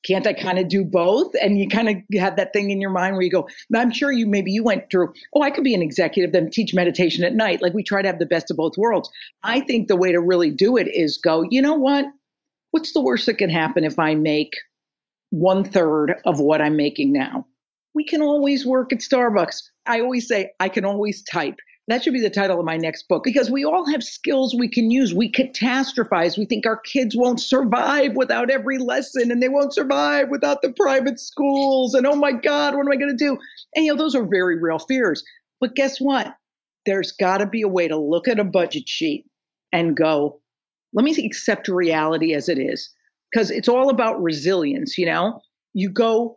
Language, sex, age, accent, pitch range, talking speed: English, female, 50-69, American, 185-265 Hz, 230 wpm